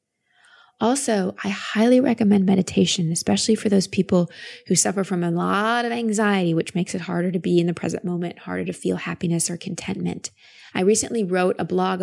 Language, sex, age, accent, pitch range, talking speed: English, female, 20-39, American, 175-215 Hz, 185 wpm